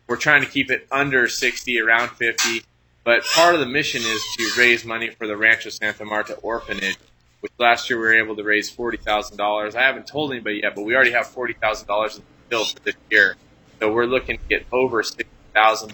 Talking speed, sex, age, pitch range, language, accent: 230 wpm, male, 20-39, 105-125 Hz, English, American